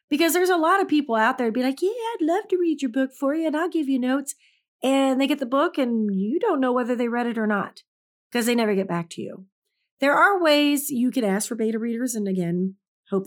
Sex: female